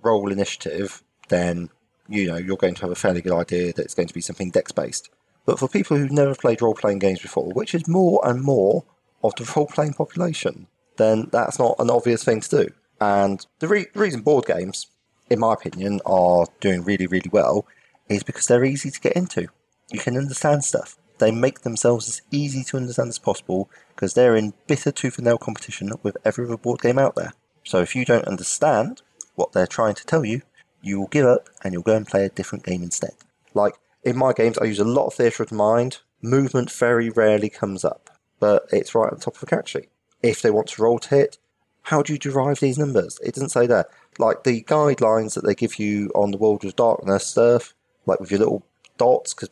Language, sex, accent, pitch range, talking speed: English, male, British, 100-135 Hz, 220 wpm